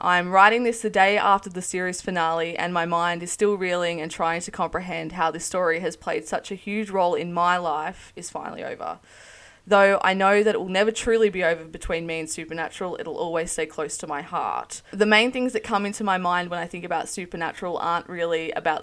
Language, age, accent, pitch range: English, 20-39, Australian, 165-195 Hz